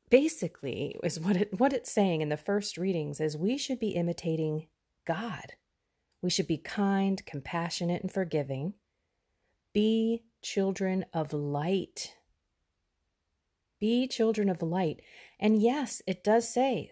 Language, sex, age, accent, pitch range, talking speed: English, female, 30-49, American, 145-195 Hz, 130 wpm